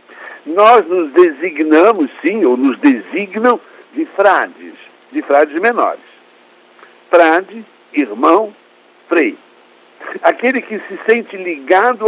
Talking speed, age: 100 wpm, 60-79